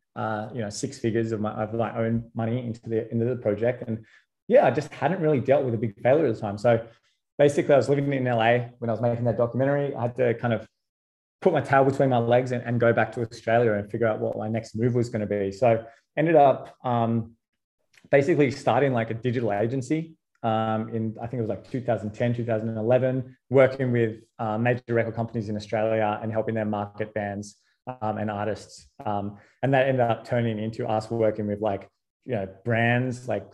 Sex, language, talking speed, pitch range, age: male, English, 215 wpm, 110-125 Hz, 20-39